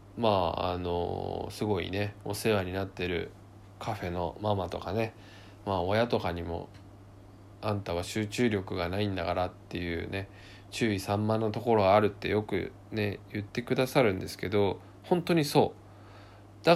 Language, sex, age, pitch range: Japanese, male, 20-39, 95-115 Hz